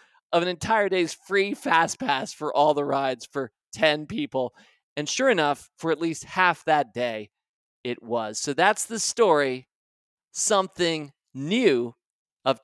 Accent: American